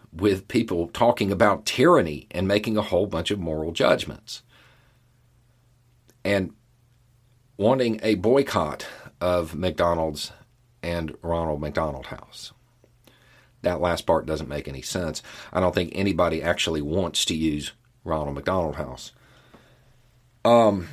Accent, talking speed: American, 120 wpm